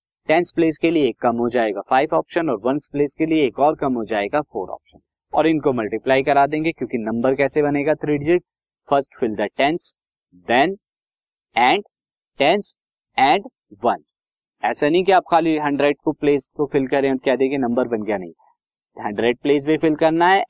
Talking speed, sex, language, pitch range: 125 wpm, male, Hindi, 125-155 Hz